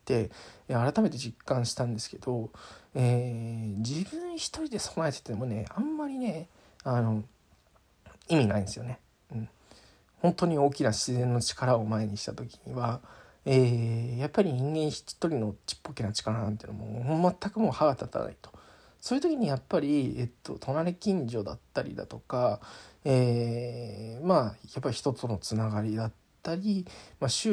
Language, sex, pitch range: Japanese, male, 110-155 Hz